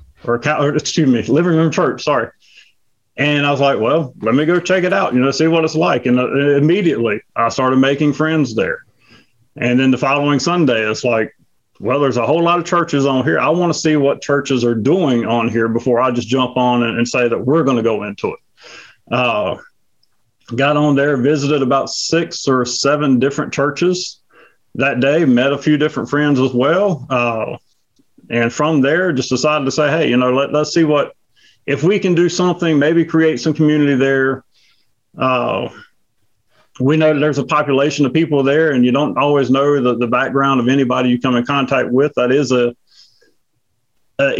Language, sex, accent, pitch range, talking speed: English, male, American, 130-155 Hz, 195 wpm